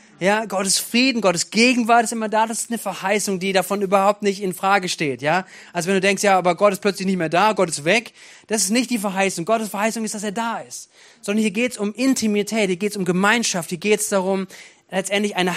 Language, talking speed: German, 235 wpm